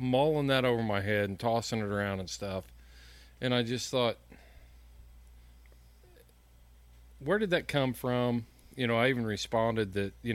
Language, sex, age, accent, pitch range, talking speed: English, male, 40-59, American, 90-120 Hz, 155 wpm